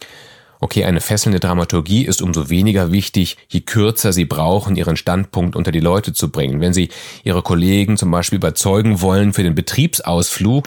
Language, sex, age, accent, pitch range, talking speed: German, male, 30-49, German, 90-115 Hz, 170 wpm